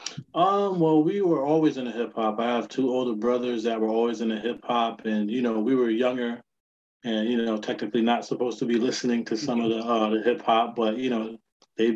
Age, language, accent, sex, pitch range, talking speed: 20-39, English, American, male, 110-125 Hz, 225 wpm